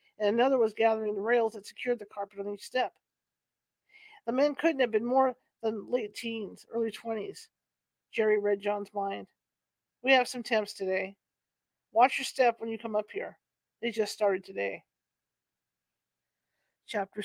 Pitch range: 200-245 Hz